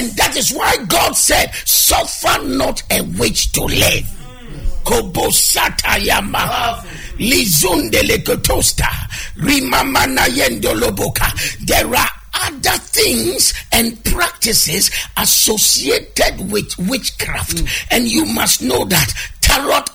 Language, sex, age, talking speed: English, male, 50-69, 80 wpm